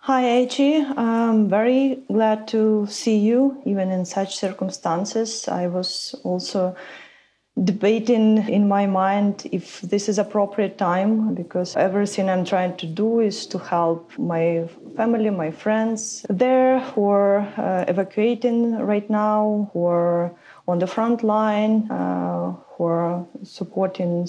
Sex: female